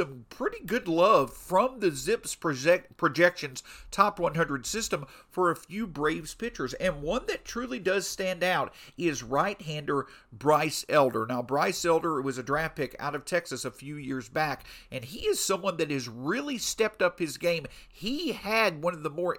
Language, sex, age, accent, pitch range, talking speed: English, male, 50-69, American, 150-205 Hz, 180 wpm